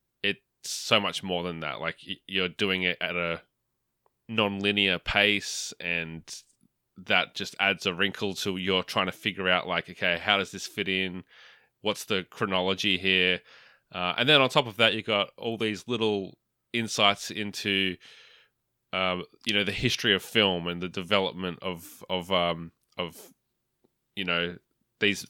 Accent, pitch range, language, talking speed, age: Australian, 90-105 Hz, English, 160 wpm, 20-39